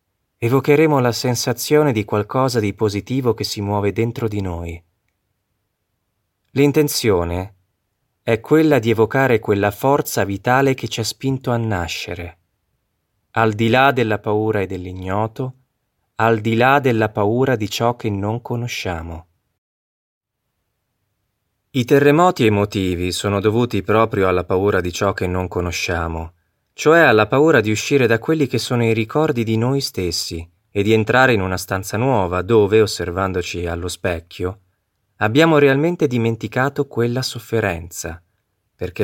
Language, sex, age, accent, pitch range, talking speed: Italian, male, 30-49, native, 95-125 Hz, 135 wpm